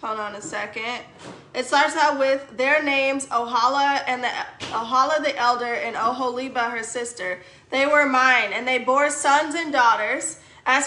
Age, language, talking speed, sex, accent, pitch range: 20-39, English, 155 wpm, female, American, 245-285 Hz